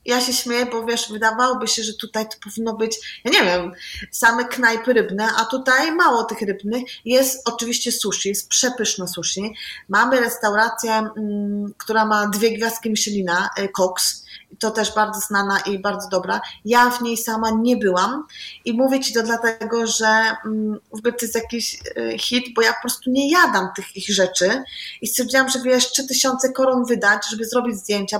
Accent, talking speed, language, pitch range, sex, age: native, 175 wpm, Polish, 210-245 Hz, female, 20-39